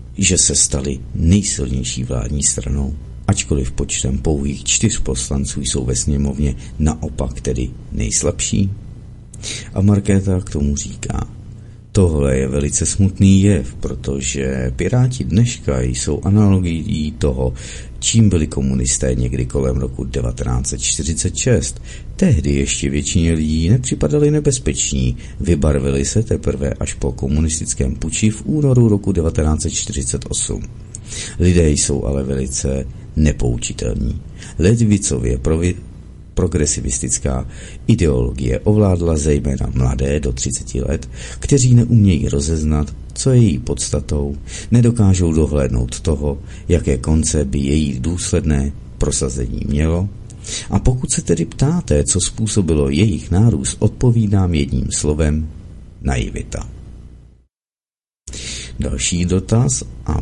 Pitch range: 70-105 Hz